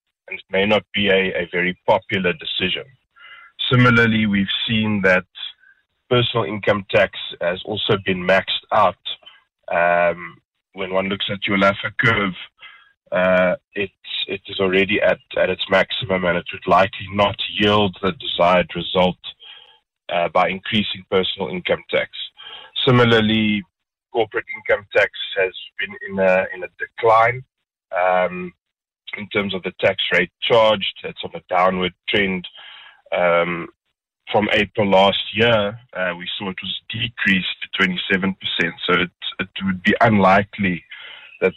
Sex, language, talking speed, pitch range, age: male, English, 145 wpm, 95-105 Hz, 30-49